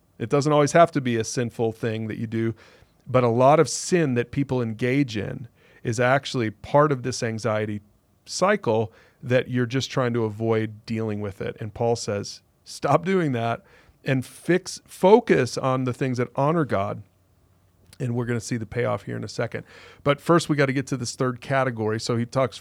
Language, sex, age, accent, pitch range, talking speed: English, male, 40-59, American, 115-145 Hz, 200 wpm